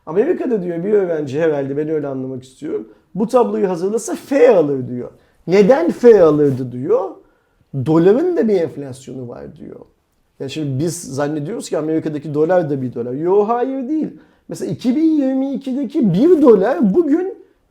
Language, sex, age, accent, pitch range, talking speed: Turkish, male, 40-59, native, 145-245 Hz, 145 wpm